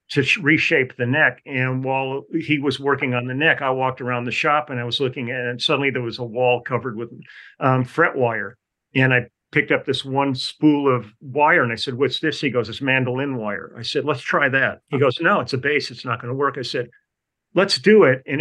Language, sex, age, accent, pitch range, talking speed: English, male, 50-69, American, 120-145 Hz, 240 wpm